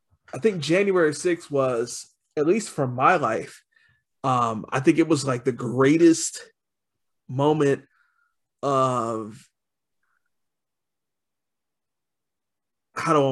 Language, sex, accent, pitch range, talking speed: English, male, American, 125-150 Hz, 110 wpm